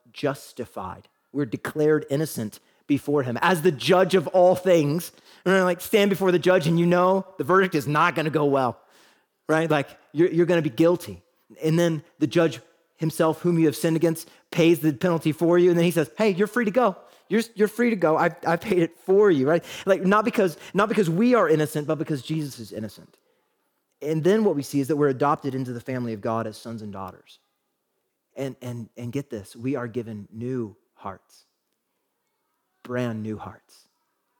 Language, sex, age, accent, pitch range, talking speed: English, male, 30-49, American, 140-180 Hz, 205 wpm